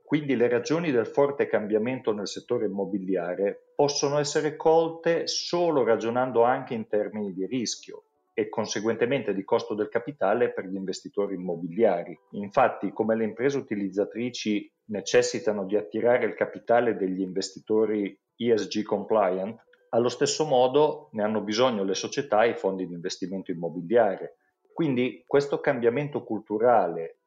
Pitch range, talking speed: 100-150 Hz, 135 wpm